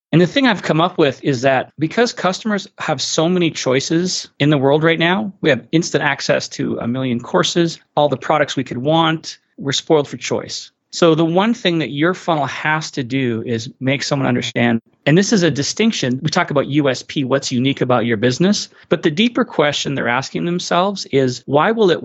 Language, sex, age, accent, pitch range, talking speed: English, male, 30-49, American, 130-170 Hz, 210 wpm